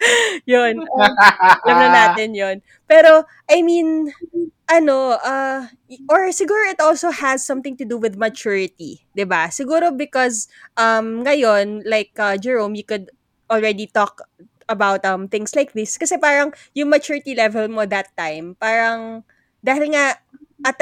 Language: Filipino